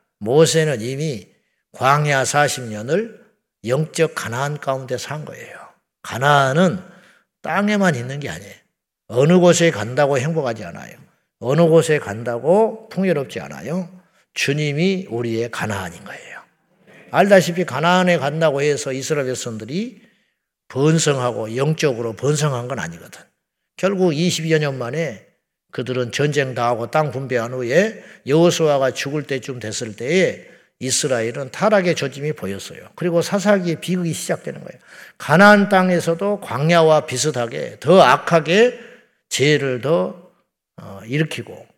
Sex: male